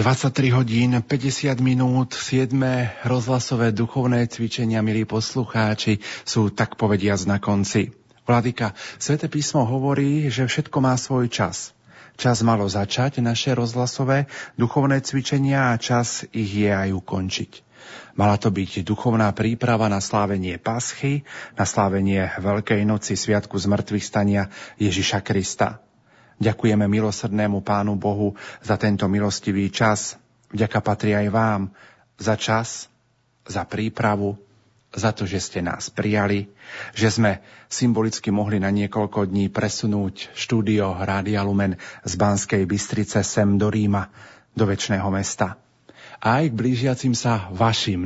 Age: 40-59